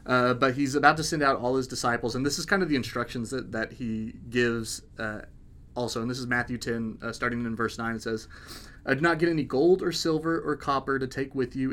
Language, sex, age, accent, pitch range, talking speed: English, male, 30-49, American, 120-145 Hz, 250 wpm